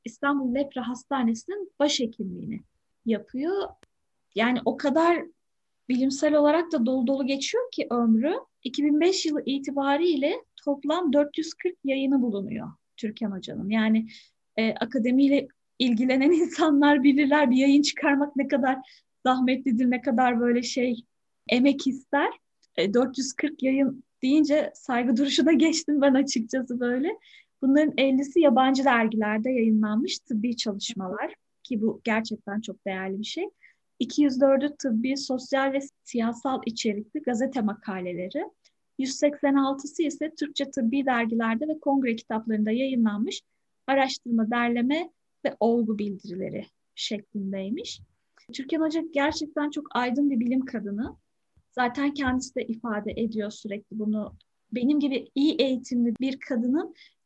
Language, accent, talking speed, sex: Turkish, native, 115 wpm, female